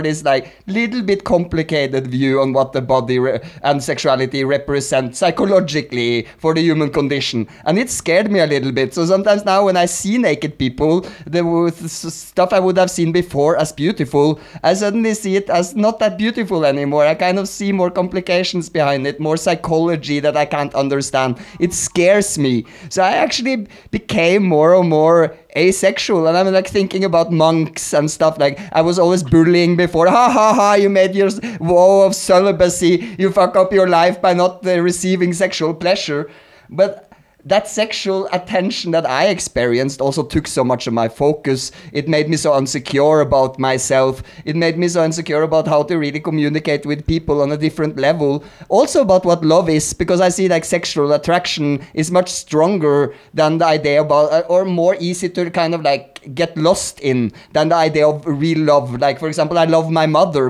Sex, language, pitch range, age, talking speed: male, English, 145-185 Hz, 30-49, 185 wpm